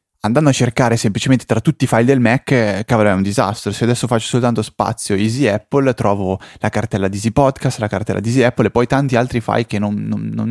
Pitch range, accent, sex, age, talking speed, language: 105-140 Hz, native, male, 20-39, 230 wpm, Italian